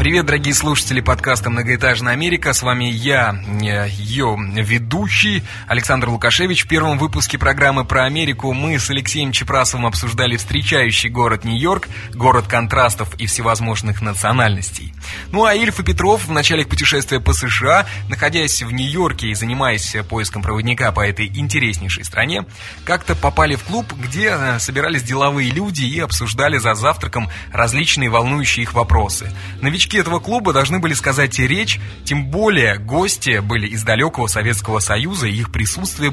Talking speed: 145 wpm